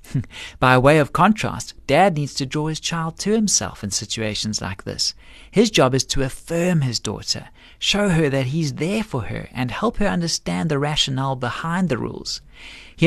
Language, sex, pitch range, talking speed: English, male, 120-170 Hz, 185 wpm